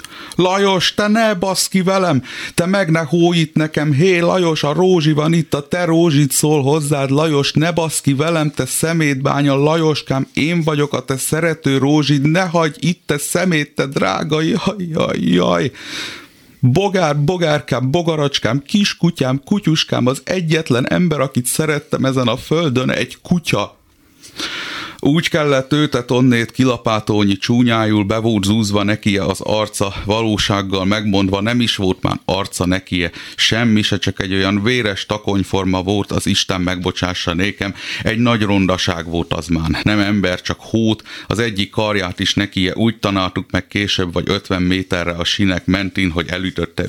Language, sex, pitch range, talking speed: Hungarian, male, 95-155 Hz, 150 wpm